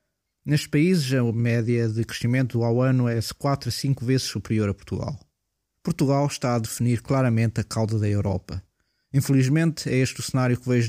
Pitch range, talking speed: 105-125 Hz, 180 wpm